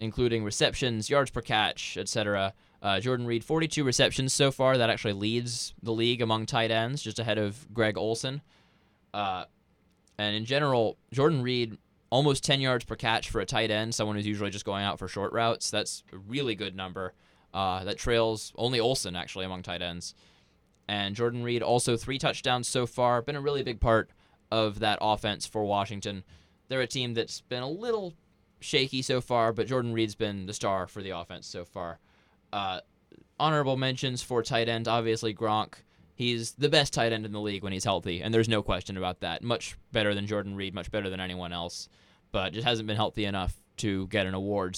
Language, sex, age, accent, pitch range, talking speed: English, male, 10-29, American, 100-120 Hz, 195 wpm